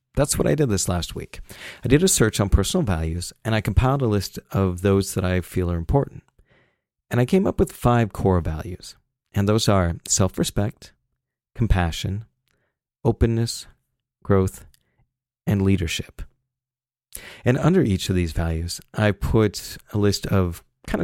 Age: 40-59